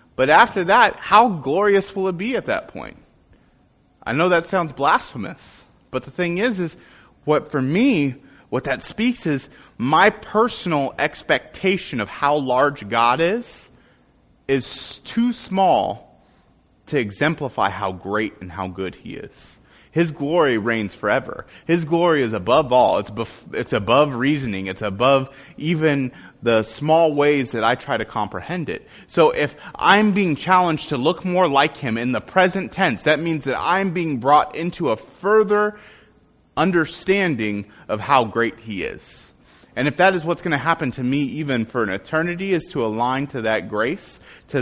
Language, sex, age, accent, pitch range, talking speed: English, male, 30-49, American, 115-175 Hz, 165 wpm